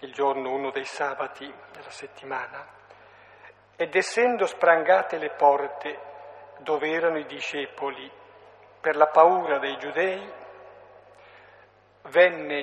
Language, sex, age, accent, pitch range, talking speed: Italian, male, 50-69, native, 145-185 Hz, 105 wpm